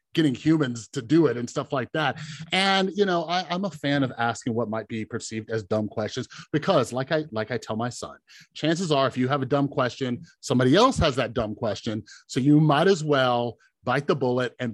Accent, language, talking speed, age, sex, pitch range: American, English, 225 wpm, 30-49, male, 115-155 Hz